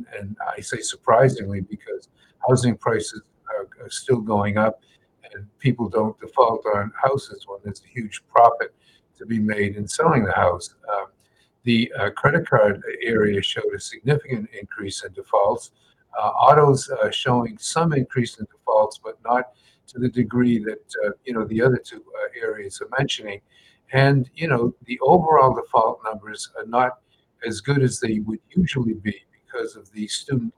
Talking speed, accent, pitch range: 165 wpm, American, 110-165 Hz